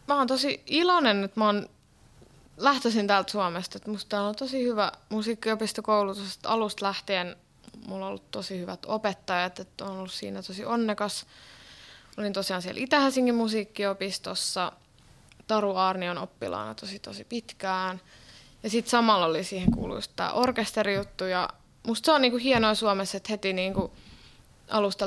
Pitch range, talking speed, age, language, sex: 190-230 Hz, 145 wpm, 20-39, Finnish, female